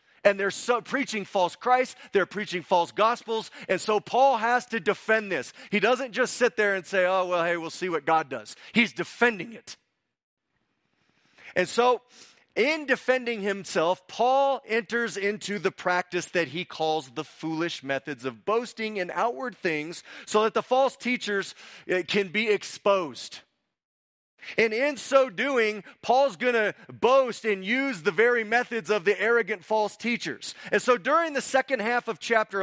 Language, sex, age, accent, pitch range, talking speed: English, male, 30-49, American, 195-250 Hz, 165 wpm